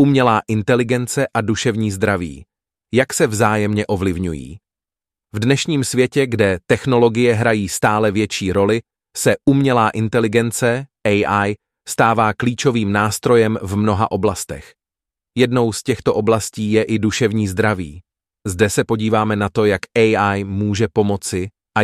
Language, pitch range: English, 95-110 Hz